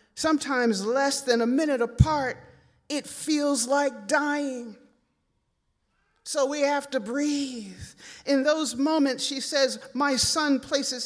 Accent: American